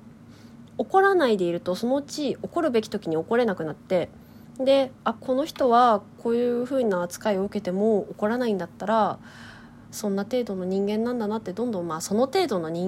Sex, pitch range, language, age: female, 170-225 Hz, Japanese, 20-39